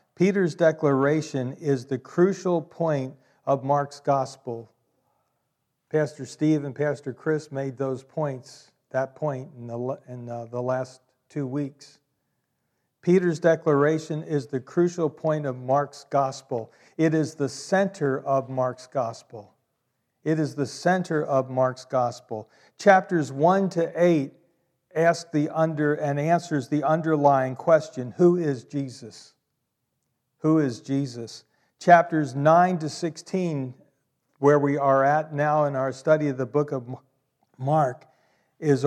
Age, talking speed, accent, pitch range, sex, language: 50-69, 135 wpm, American, 130-155 Hz, male, English